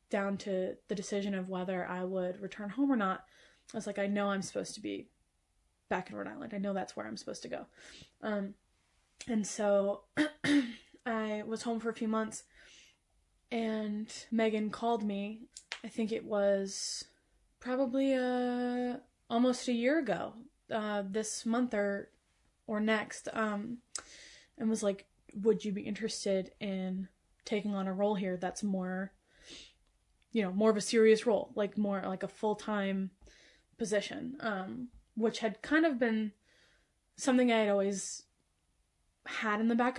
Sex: female